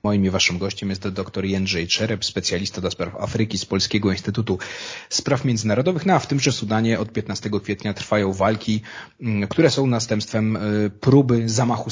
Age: 30-49